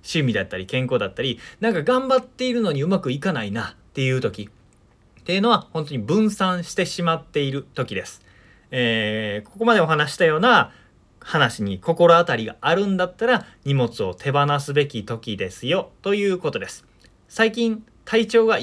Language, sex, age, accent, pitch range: Japanese, male, 20-39, native, 120-185 Hz